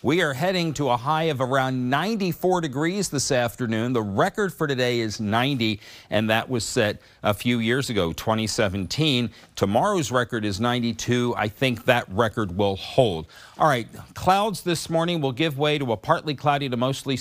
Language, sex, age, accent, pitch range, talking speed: English, male, 50-69, American, 105-140 Hz, 180 wpm